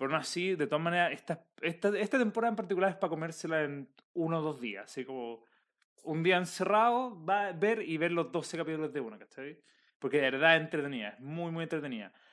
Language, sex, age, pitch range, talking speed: Spanish, male, 20-39, 145-185 Hz, 220 wpm